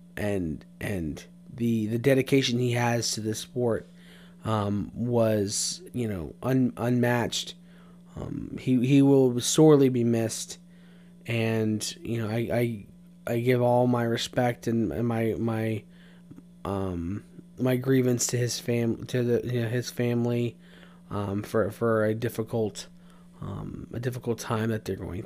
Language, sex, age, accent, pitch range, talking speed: English, male, 20-39, American, 120-175 Hz, 145 wpm